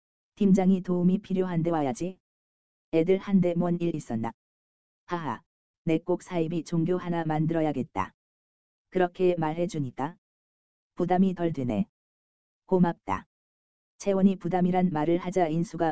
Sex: female